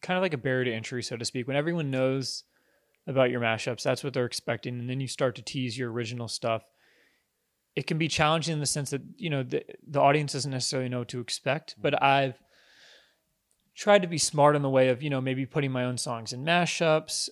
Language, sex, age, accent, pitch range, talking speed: English, male, 20-39, American, 120-140 Hz, 230 wpm